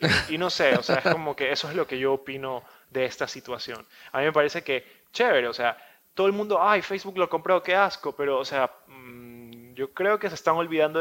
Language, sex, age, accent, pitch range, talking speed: English, male, 20-39, Argentinian, 130-175 Hz, 240 wpm